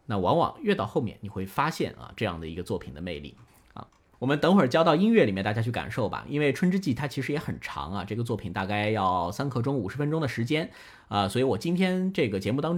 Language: Chinese